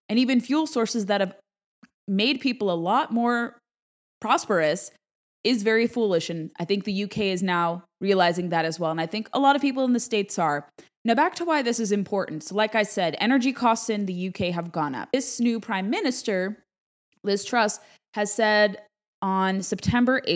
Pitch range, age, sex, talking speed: 175-230 Hz, 20-39, female, 195 wpm